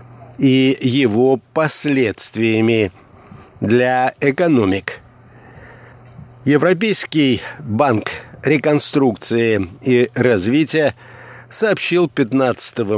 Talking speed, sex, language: 55 wpm, male, Russian